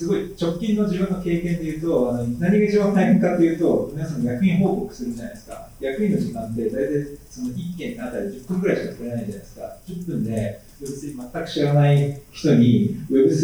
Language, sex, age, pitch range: Japanese, male, 40-59, 120-190 Hz